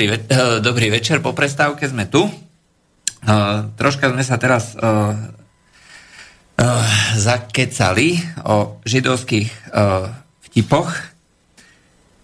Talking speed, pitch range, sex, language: 70 wpm, 110-135 Hz, male, Slovak